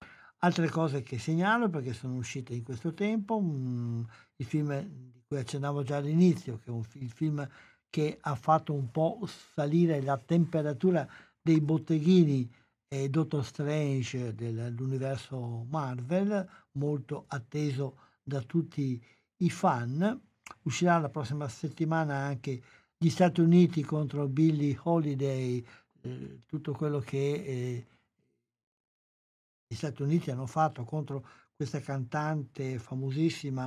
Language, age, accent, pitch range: Italian, 60-79, native, 130-155 Hz